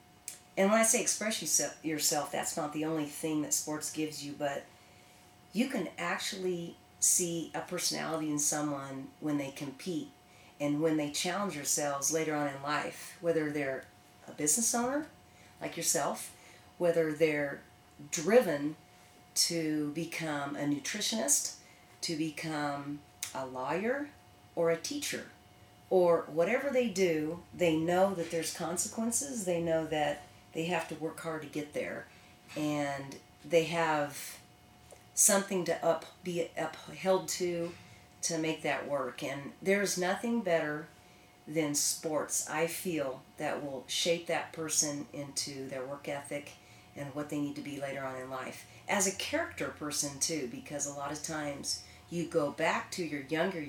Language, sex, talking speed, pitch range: English, female, 150 wpm, 145-170 Hz